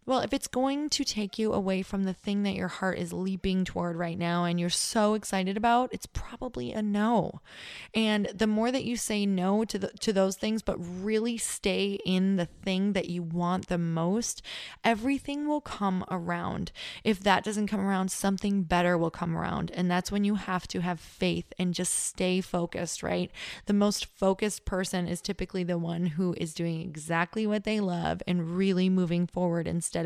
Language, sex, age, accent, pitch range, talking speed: English, female, 20-39, American, 175-210 Hz, 195 wpm